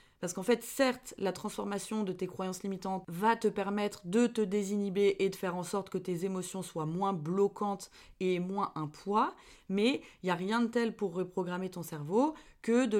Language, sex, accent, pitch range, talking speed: French, female, French, 185-225 Hz, 210 wpm